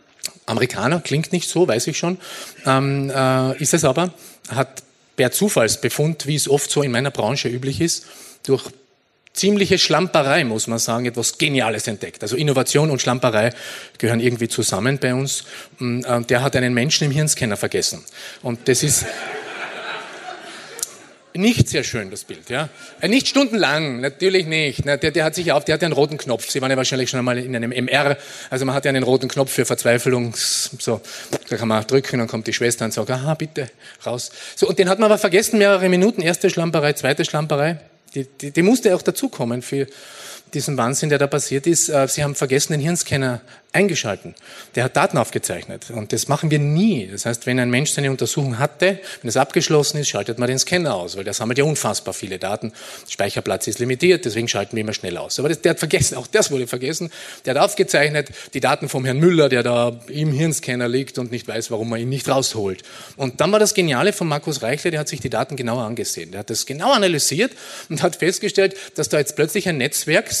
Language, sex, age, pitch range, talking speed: German, male, 30-49, 125-165 Hz, 205 wpm